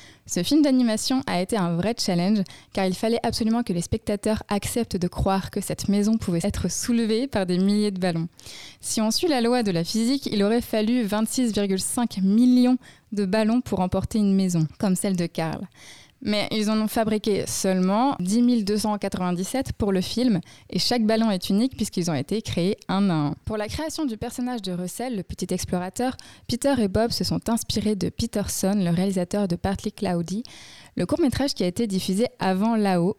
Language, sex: French, female